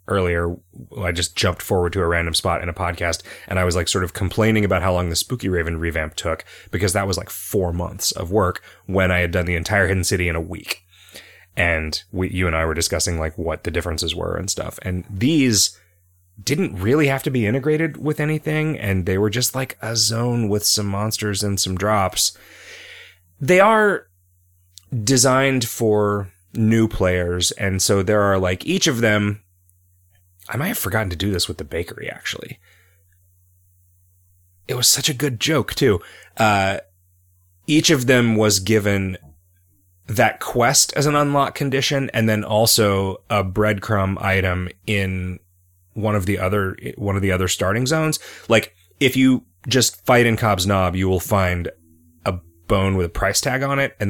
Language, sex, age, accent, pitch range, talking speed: English, male, 30-49, American, 90-110 Hz, 180 wpm